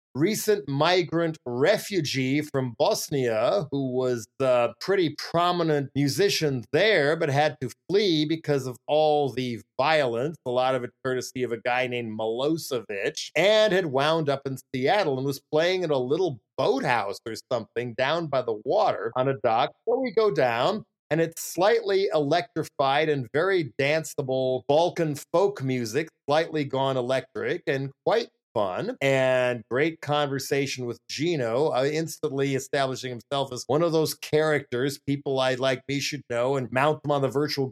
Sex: male